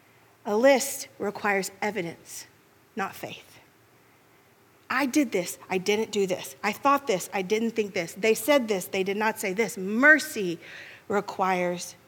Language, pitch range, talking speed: English, 205-265 Hz, 150 wpm